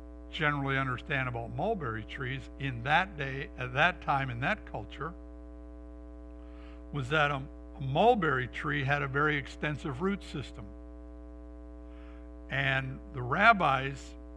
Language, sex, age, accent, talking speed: English, male, 60-79, American, 115 wpm